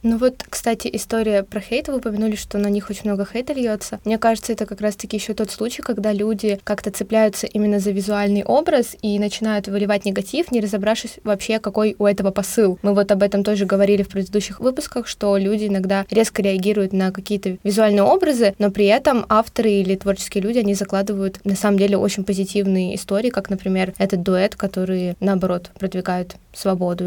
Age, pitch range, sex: 20-39, 195-220 Hz, female